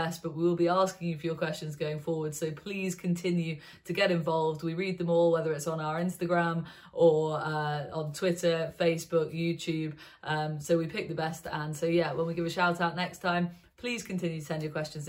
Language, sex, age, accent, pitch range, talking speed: English, female, 30-49, British, 160-180 Hz, 220 wpm